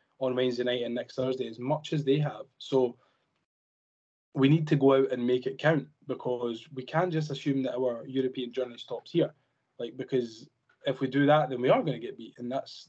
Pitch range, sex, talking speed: 125-145 Hz, male, 220 wpm